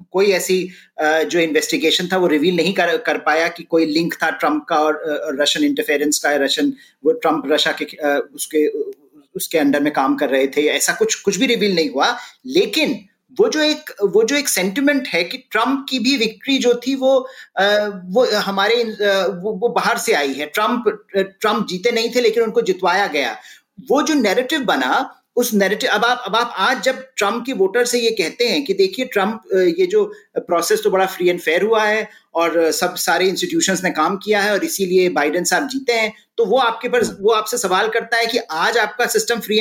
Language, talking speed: Hindi, 205 wpm